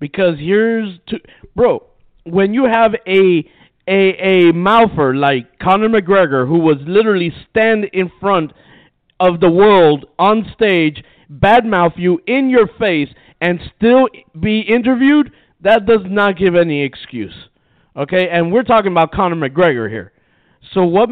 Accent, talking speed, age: American, 140 wpm, 50-69